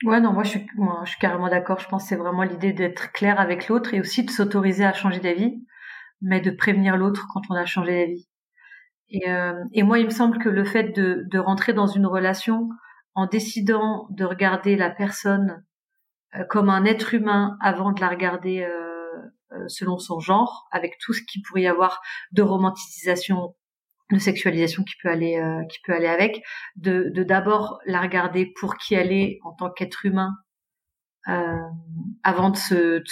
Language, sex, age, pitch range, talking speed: French, female, 40-59, 175-205 Hz, 195 wpm